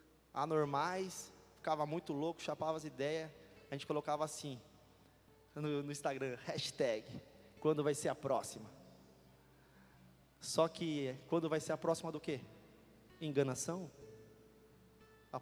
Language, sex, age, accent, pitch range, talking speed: Portuguese, male, 20-39, Brazilian, 110-155 Hz, 120 wpm